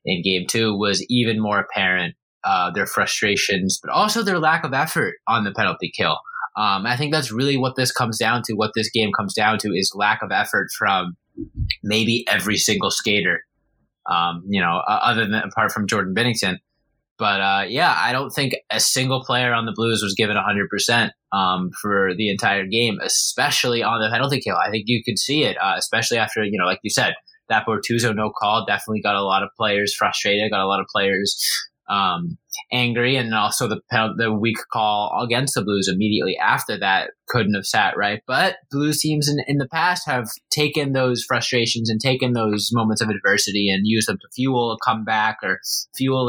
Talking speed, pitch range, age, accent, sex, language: 200 wpm, 105-125 Hz, 20-39, American, male, English